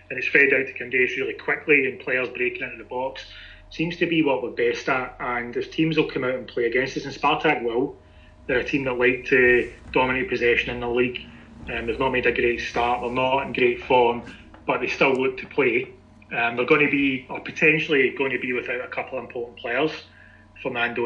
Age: 30-49